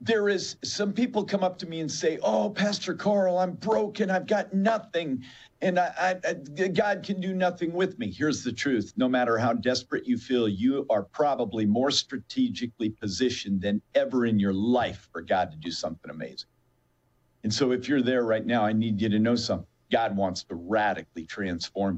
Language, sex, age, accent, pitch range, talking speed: English, male, 50-69, American, 105-170 Hz, 195 wpm